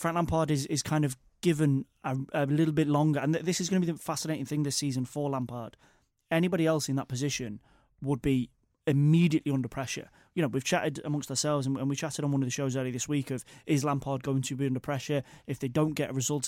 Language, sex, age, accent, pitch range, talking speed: English, male, 20-39, British, 135-150 Hz, 240 wpm